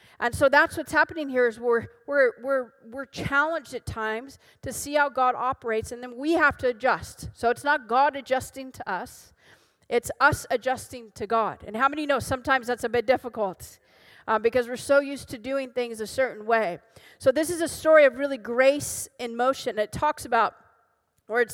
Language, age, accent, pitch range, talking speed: Swedish, 40-59, American, 245-285 Hz, 200 wpm